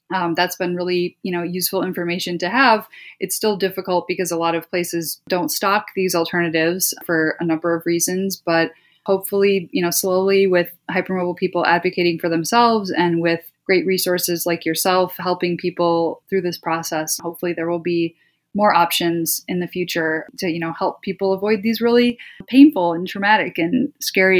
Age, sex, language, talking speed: 20-39, female, English, 175 wpm